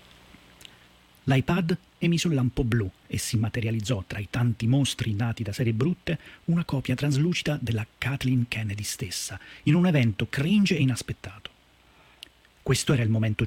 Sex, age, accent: male, 40-59, native